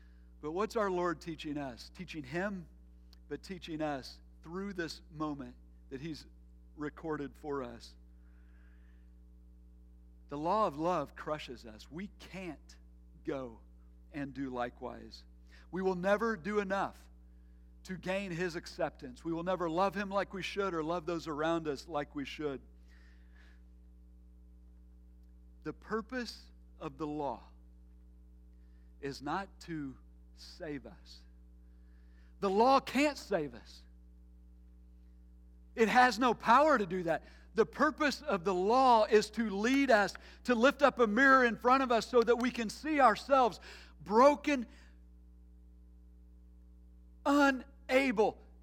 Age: 50-69